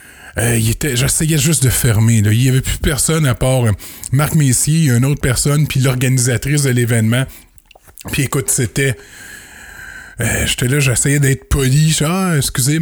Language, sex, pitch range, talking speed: French, male, 125-165 Hz, 165 wpm